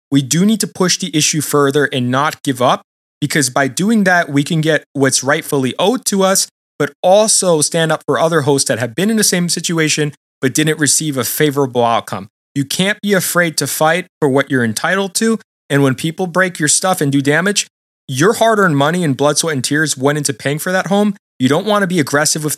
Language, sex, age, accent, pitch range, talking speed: English, male, 20-39, American, 140-180 Hz, 225 wpm